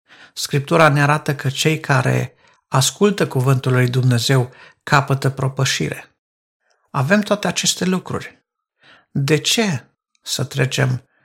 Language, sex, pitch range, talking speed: Romanian, male, 135-165 Hz, 105 wpm